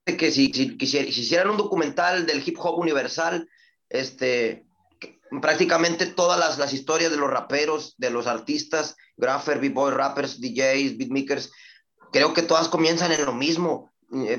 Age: 30-49